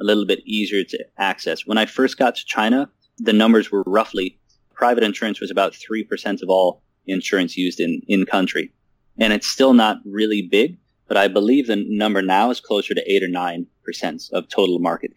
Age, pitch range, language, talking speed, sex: 30-49, 95-120 Hz, English, 200 wpm, male